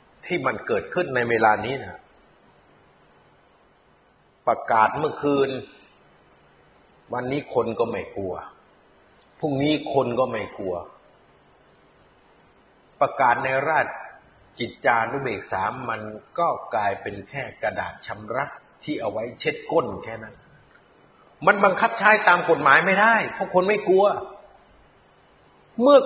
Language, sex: Thai, male